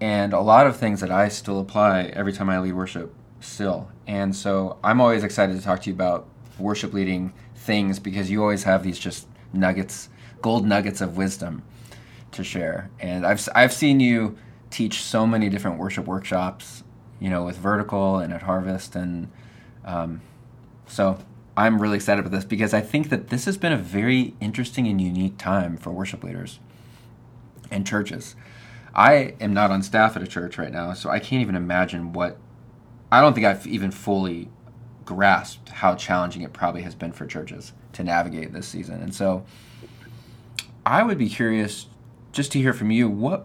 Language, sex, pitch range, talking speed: English, male, 95-115 Hz, 180 wpm